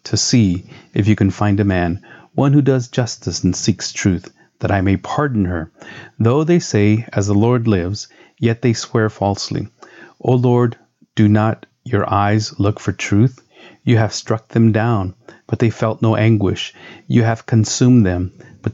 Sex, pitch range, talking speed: male, 100-120 Hz, 175 wpm